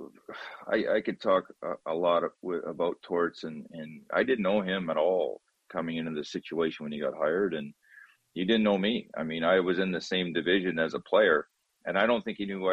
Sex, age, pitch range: male, 30-49, 80-105 Hz